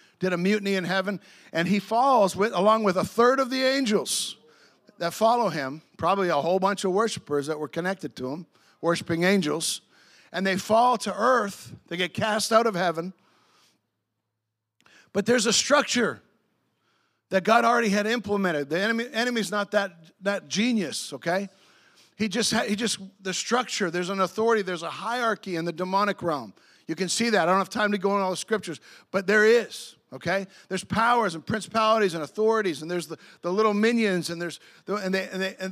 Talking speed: 195 wpm